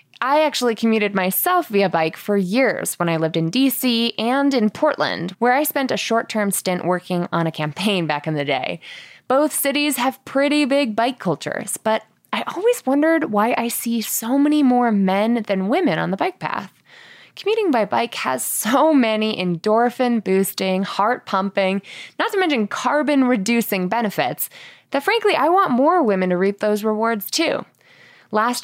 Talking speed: 165 wpm